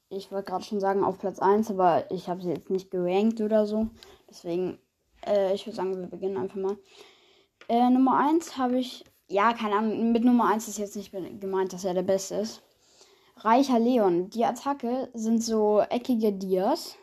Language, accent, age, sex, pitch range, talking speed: German, German, 20-39, female, 195-250 Hz, 190 wpm